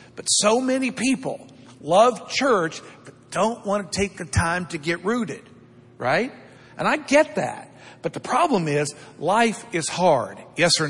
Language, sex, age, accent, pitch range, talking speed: English, male, 50-69, American, 165-230 Hz, 165 wpm